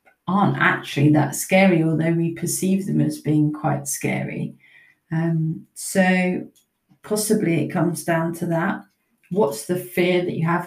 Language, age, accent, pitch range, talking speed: English, 30-49, British, 160-185 Hz, 145 wpm